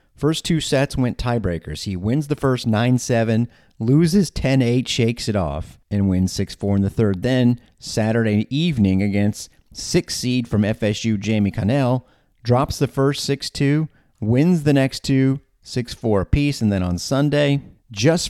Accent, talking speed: American, 150 wpm